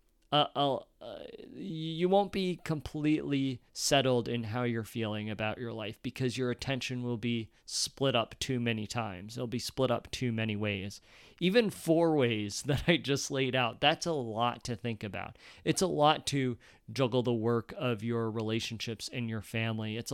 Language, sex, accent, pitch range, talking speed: English, male, American, 115-140 Hz, 175 wpm